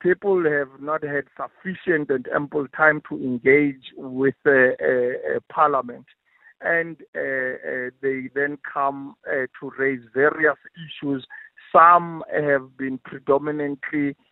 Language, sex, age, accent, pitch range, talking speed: English, male, 50-69, South African, 130-160 Hz, 125 wpm